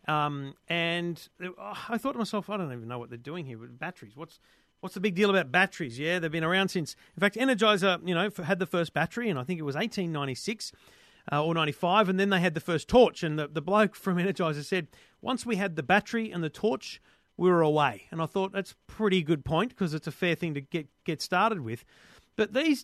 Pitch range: 150-200 Hz